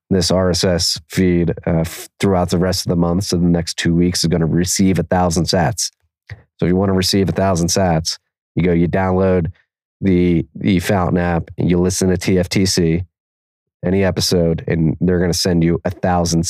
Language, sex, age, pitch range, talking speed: English, male, 30-49, 85-95 Hz, 190 wpm